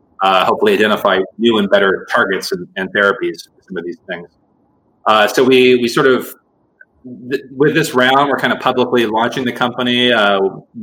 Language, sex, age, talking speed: English, male, 30-49, 185 wpm